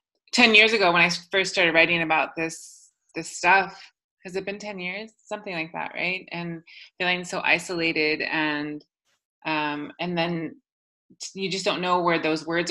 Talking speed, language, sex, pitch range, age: 170 wpm, English, female, 155-200 Hz, 20-39